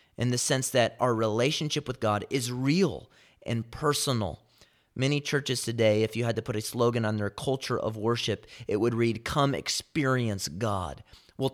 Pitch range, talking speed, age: 110-130 Hz, 175 wpm, 30-49